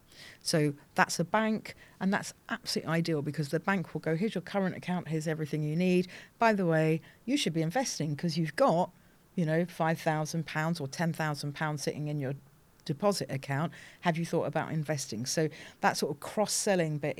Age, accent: 50-69, British